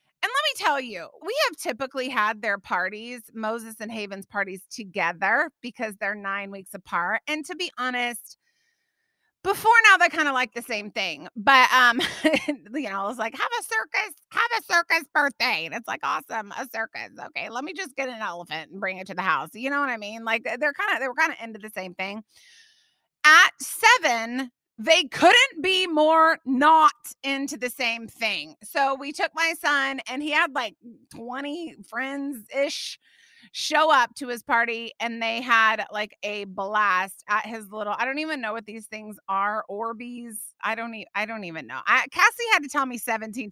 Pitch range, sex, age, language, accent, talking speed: 210-295 Hz, female, 30-49, English, American, 195 wpm